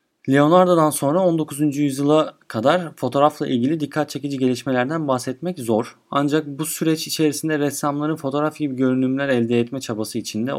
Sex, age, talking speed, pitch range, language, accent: male, 30-49, 135 wpm, 120-145 Hz, Turkish, native